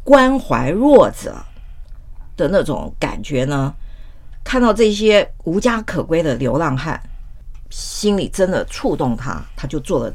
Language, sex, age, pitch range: Chinese, female, 50-69, 130-215 Hz